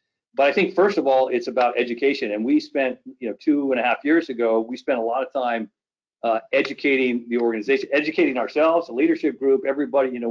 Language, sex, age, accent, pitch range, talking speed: English, male, 40-59, American, 120-140 Hz, 220 wpm